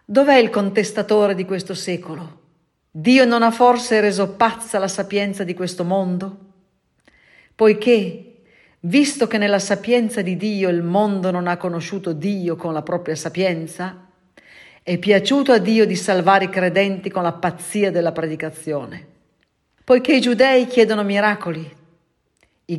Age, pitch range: 40-59, 170-215 Hz